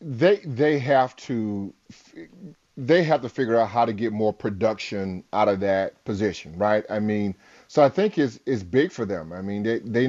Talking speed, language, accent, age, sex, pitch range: 195 wpm, English, American, 30-49, male, 110-130 Hz